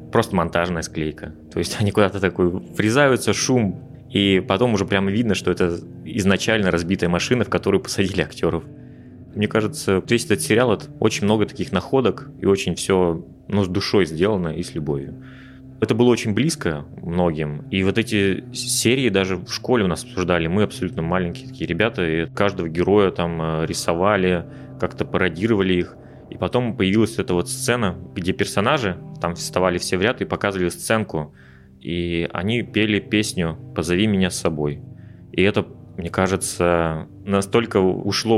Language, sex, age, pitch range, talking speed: Russian, male, 20-39, 85-105 Hz, 160 wpm